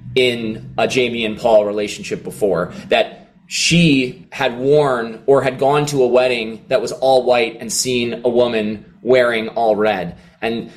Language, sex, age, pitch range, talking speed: English, male, 20-39, 125-155 Hz, 160 wpm